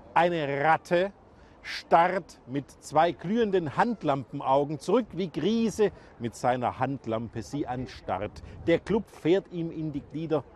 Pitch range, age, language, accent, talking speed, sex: 125-180 Hz, 50-69, German, German, 125 wpm, male